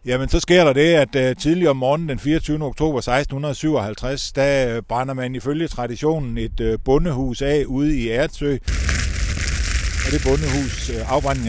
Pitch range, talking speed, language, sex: 115-145 Hz, 135 wpm, Danish, male